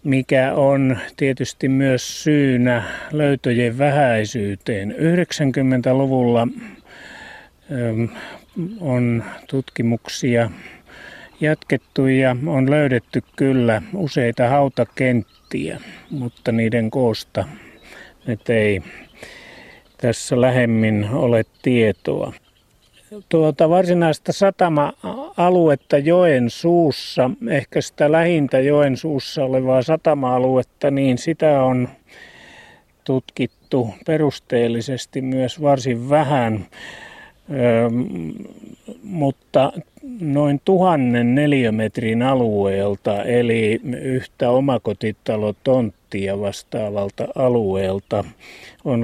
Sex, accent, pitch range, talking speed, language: male, native, 115-145 Hz, 70 wpm, Finnish